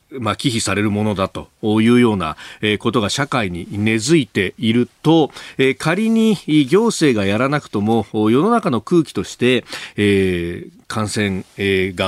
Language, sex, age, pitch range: Japanese, male, 40-59, 100-135 Hz